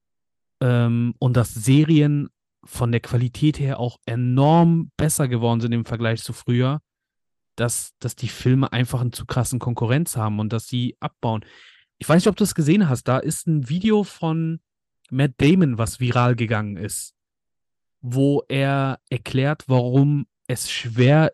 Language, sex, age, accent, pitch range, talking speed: German, male, 30-49, German, 120-145 Hz, 155 wpm